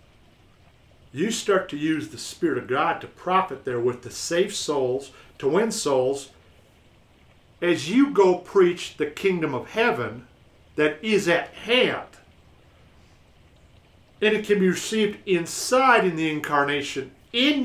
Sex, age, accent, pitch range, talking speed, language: male, 50-69, American, 110-175 Hz, 135 wpm, English